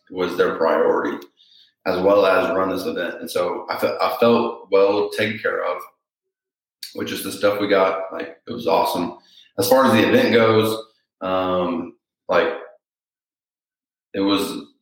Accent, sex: American, male